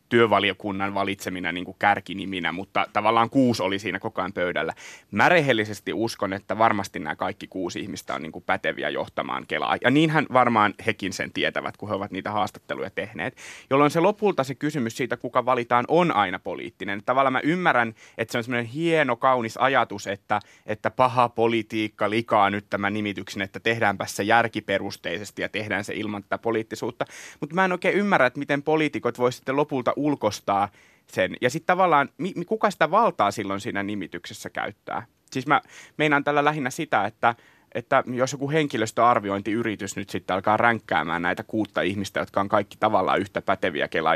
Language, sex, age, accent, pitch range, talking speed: Finnish, male, 30-49, native, 105-145 Hz, 175 wpm